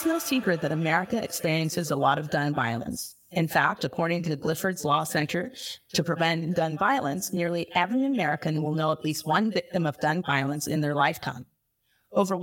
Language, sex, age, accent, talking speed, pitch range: English, female, 40-59, American, 190 wpm, 155-195 Hz